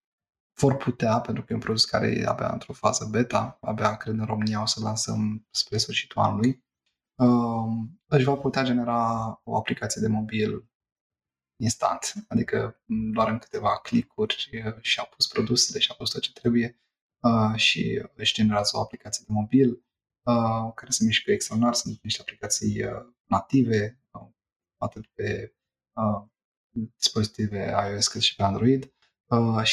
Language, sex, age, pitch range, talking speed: Romanian, male, 20-39, 105-125 Hz, 145 wpm